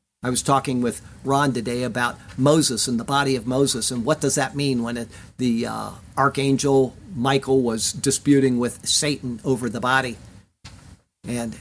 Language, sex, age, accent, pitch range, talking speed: English, male, 50-69, American, 125-210 Hz, 160 wpm